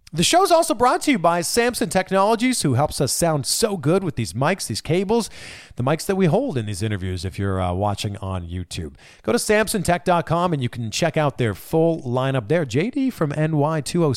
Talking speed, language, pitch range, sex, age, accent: 210 wpm, English, 120-190 Hz, male, 40-59, American